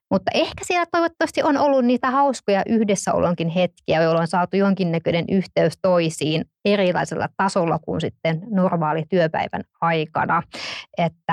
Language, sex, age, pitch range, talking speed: Finnish, female, 20-39, 170-205 Hz, 125 wpm